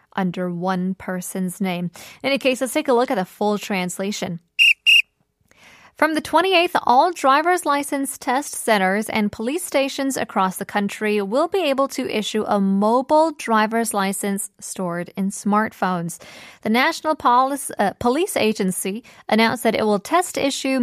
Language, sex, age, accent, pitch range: Korean, female, 20-39, American, 195-260 Hz